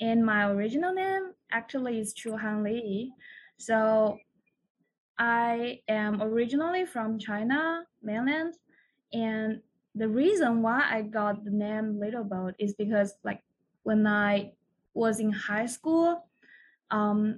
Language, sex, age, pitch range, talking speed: English, female, 20-39, 210-245 Hz, 125 wpm